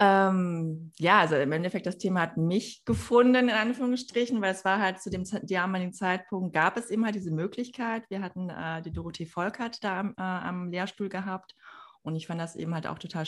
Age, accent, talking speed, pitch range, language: 20-39, German, 205 wpm, 160-195 Hz, German